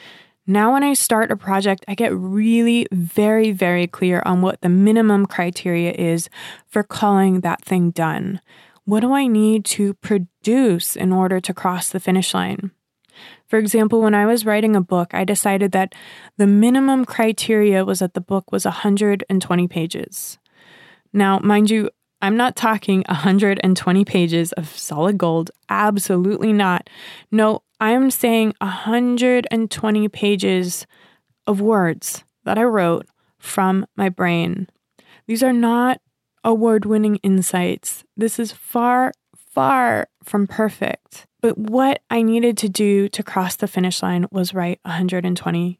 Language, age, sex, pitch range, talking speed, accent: English, 20-39, female, 180-220 Hz, 140 wpm, American